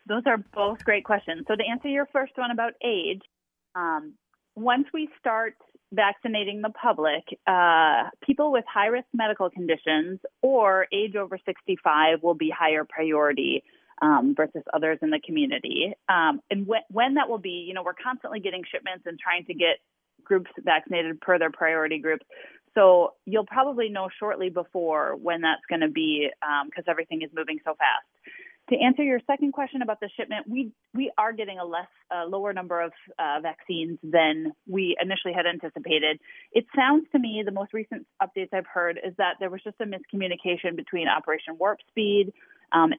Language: English